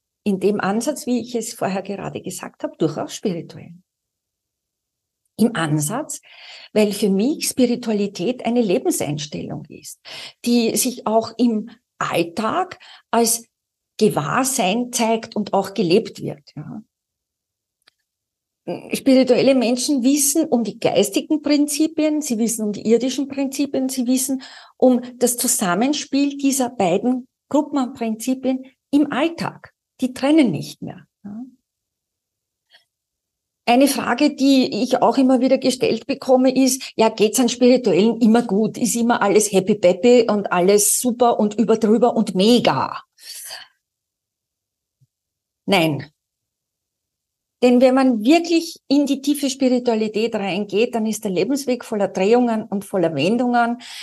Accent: Austrian